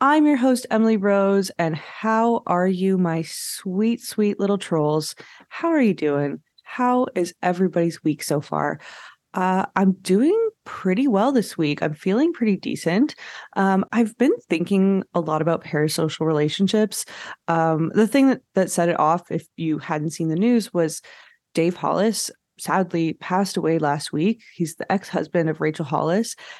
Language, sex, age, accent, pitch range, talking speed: English, female, 20-39, American, 165-220 Hz, 160 wpm